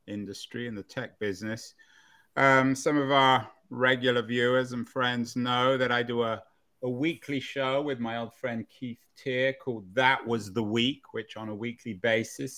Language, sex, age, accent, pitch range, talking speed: English, male, 30-49, British, 110-135 Hz, 180 wpm